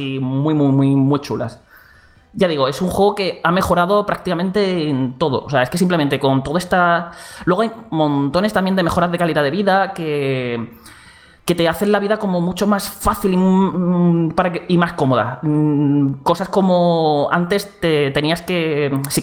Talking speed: 175 wpm